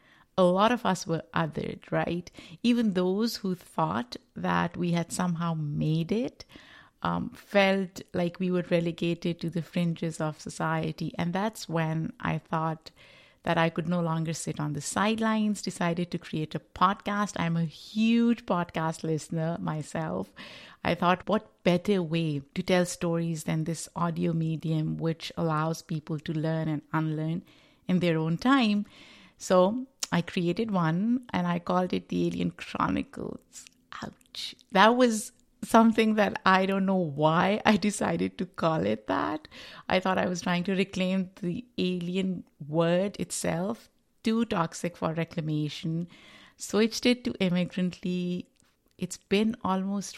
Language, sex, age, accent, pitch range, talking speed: English, female, 60-79, Indian, 165-195 Hz, 150 wpm